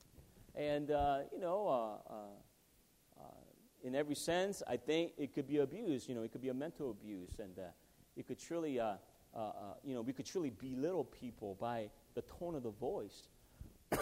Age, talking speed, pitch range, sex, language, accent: 40-59, 195 wpm, 110-145 Hz, male, English, American